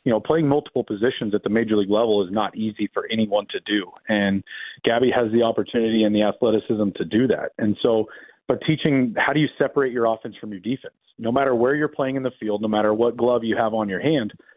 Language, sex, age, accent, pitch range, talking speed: English, male, 40-59, American, 110-135 Hz, 240 wpm